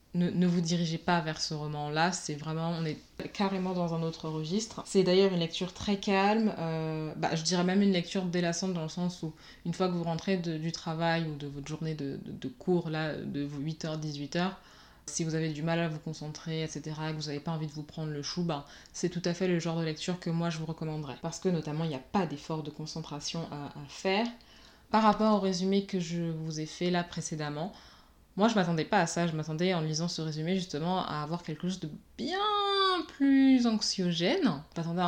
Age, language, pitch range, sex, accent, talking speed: 20-39, French, 155-180 Hz, female, French, 230 wpm